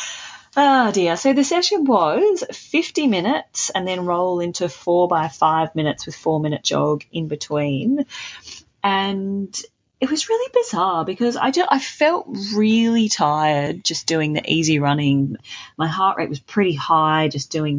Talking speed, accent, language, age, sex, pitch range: 150 wpm, Australian, English, 30-49, female, 140-195 Hz